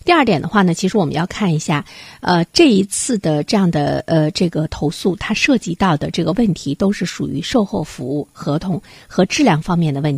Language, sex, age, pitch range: Chinese, female, 50-69, 155-210 Hz